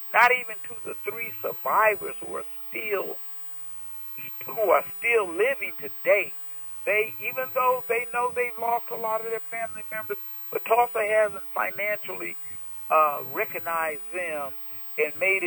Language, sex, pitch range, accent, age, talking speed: English, male, 180-235 Hz, American, 60-79, 140 wpm